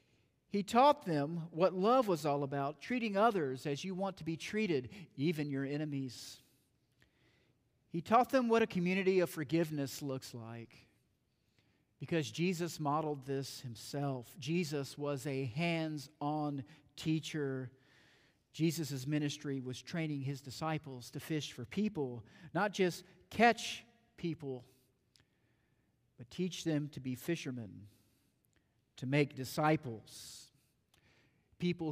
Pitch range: 130-160 Hz